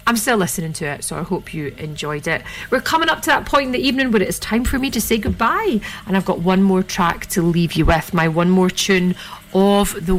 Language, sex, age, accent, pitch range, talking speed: English, female, 30-49, British, 175-220 Hz, 265 wpm